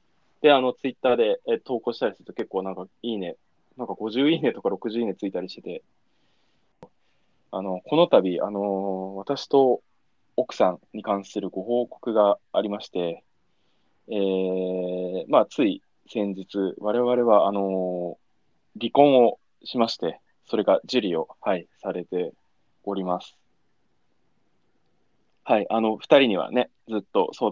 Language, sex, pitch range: Japanese, male, 95-135 Hz